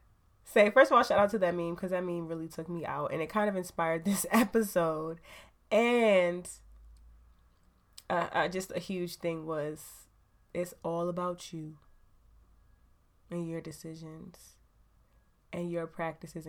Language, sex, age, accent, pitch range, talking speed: English, female, 20-39, American, 170-225 Hz, 145 wpm